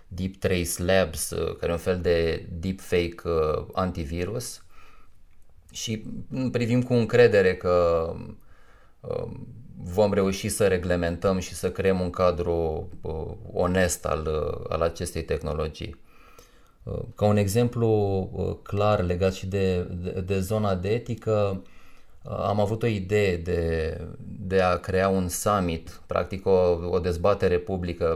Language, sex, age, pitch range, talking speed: Romanian, male, 30-49, 85-105 Hz, 120 wpm